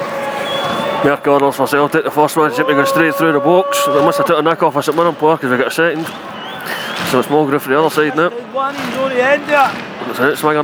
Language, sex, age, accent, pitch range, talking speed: English, male, 20-39, British, 125-155 Hz, 230 wpm